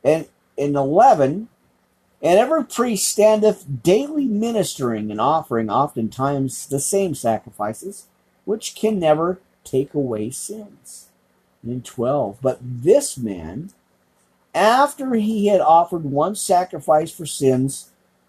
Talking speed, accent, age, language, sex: 115 wpm, American, 50-69, English, male